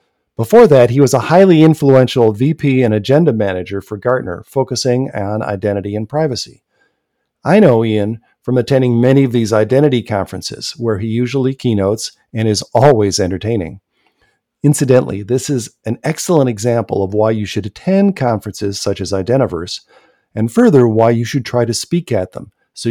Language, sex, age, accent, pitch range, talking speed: English, male, 50-69, American, 105-140 Hz, 160 wpm